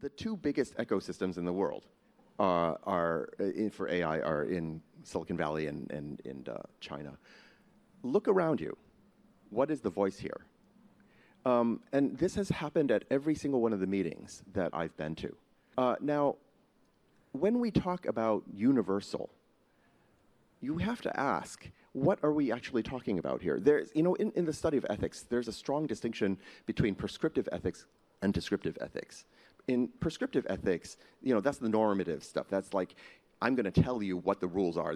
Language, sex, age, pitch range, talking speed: English, male, 30-49, 95-135 Hz, 175 wpm